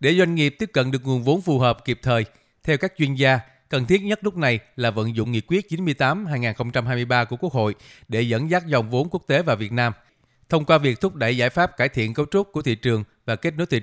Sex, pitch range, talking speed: male, 115-155 Hz, 250 wpm